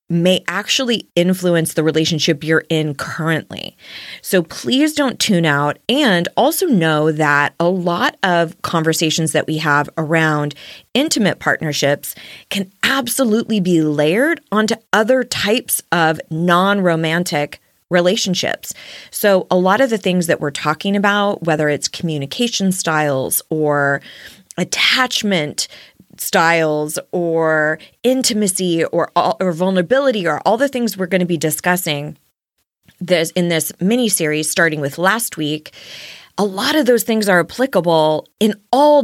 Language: English